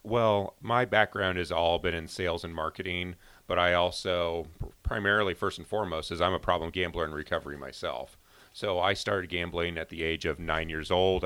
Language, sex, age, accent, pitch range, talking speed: English, male, 40-59, American, 85-95 Hz, 190 wpm